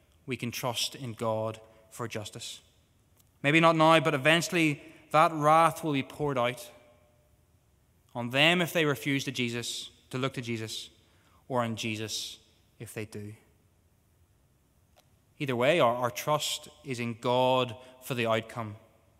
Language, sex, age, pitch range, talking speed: English, male, 20-39, 110-145 Hz, 145 wpm